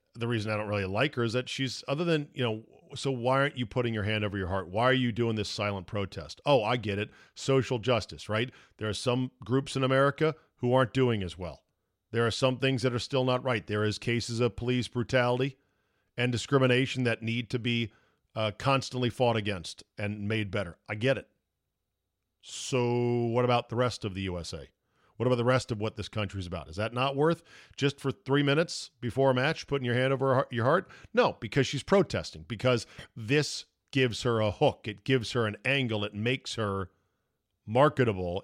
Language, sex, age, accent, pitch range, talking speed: English, male, 40-59, American, 105-130 Hz, 210 wpm